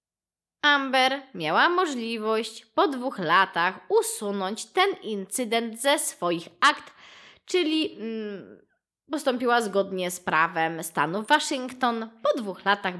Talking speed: 100 wpm